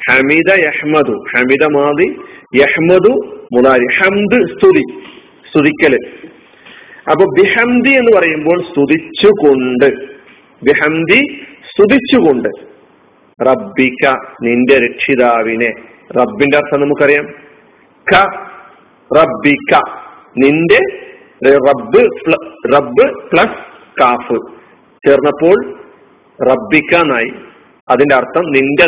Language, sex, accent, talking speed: Malayalam, male, native, 60 wpm